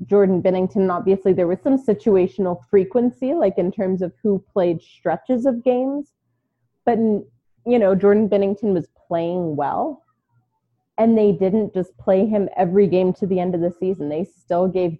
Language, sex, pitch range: English, female, 170-205 Hz